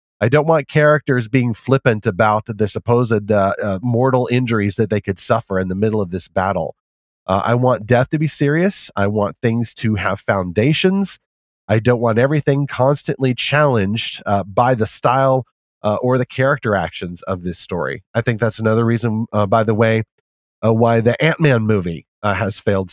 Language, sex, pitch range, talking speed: English, male, 105-130 Hz, 185 wpm